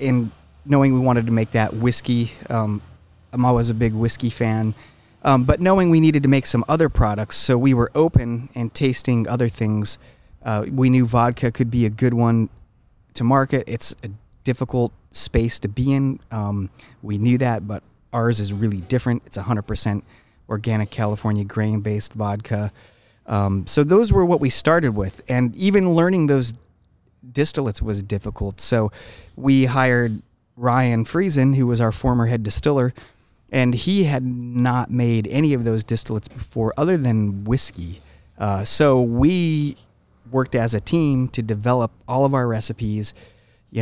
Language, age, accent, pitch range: English, 30-49, American, 110-130 Hz